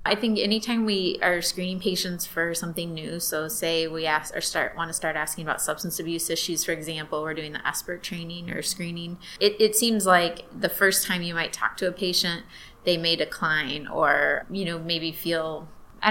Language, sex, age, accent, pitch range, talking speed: English, female, 20-39, American, 155-175 Hz, 205 wpm